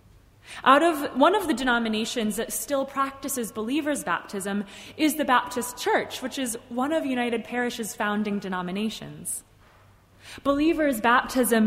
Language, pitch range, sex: English, 195-260 Hz, female